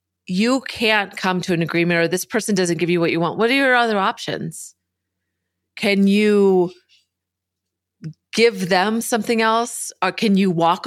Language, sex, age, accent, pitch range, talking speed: English, female, 30-49, American, 165-210 Hz, 165 wpm